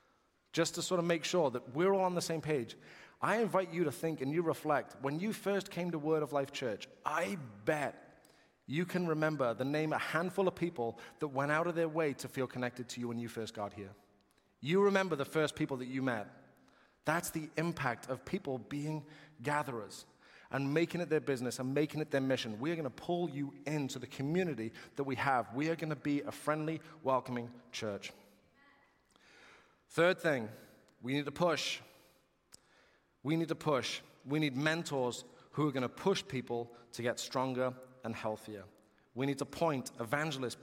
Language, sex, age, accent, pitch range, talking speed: English, male, 30-49, British, 130-160 Hz, 195 wpm